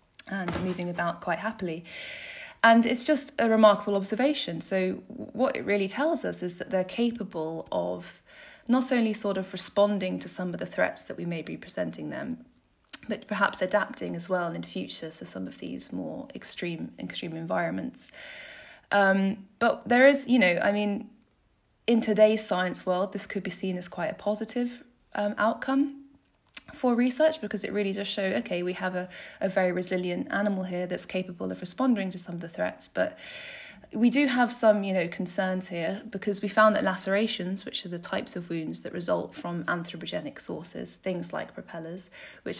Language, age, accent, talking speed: English, 20-39, British, 180 wpm